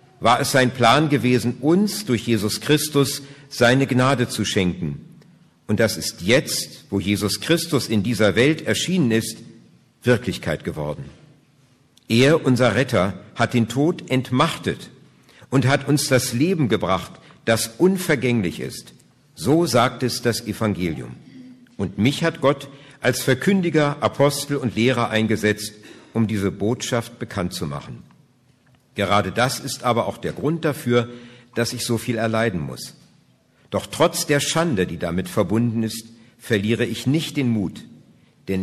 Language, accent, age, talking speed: German, German, 50-69, 145 wpm